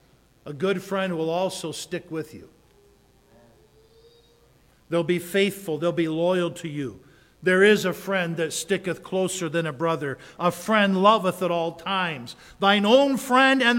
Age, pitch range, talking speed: 50-69, 160-205 Hz, 155 wpm